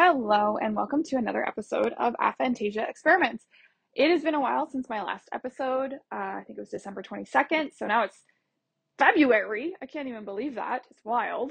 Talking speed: 190 wpm